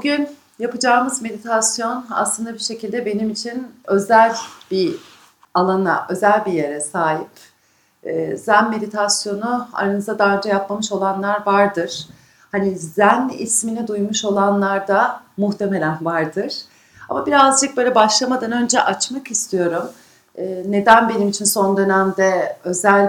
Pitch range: 190-240 Hz